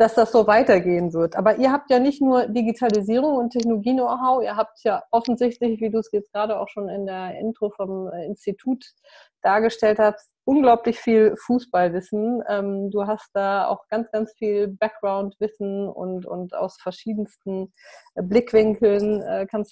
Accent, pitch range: German, 195-230 Hz